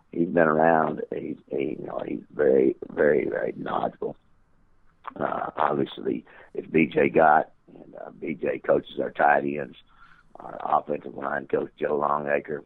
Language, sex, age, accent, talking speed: English, male, 50-69, American, 125 wpm